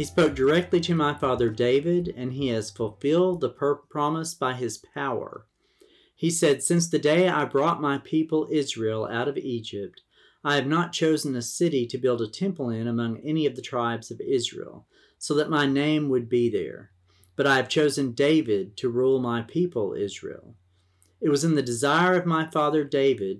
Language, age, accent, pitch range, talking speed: English, 40-59, American, 115-150 Hz, 185 wpm